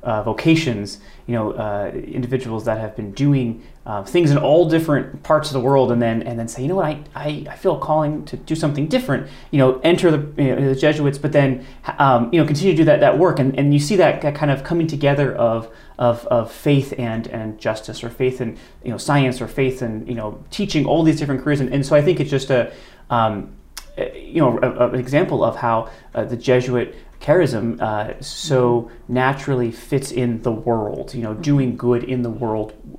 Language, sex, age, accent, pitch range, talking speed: English, male, 30-49, American, 115-145 Hz, 225 wpm